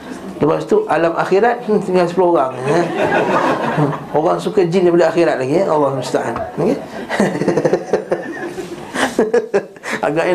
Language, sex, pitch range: Malay, male, 135-170 Hz